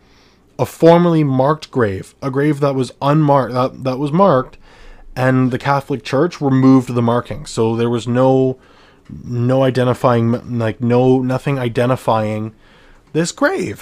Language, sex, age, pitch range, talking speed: English, male, 20-39, 110-140 Hz, 140 wpm